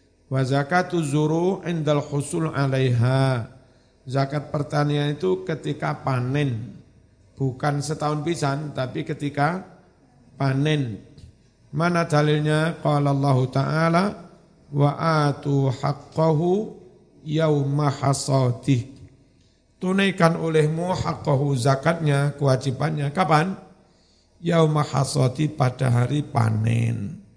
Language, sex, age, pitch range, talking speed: Indonesian, male, 50-69, 125-155 Hz, 70 wpm